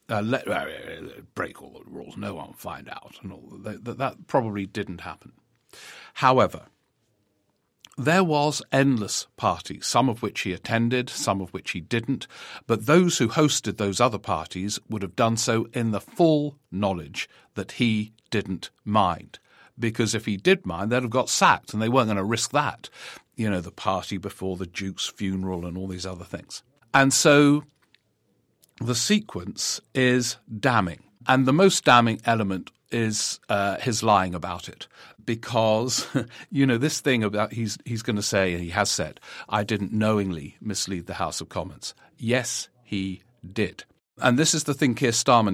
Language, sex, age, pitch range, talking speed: English, male, 50-69, 100-125 Hz, 175 wpm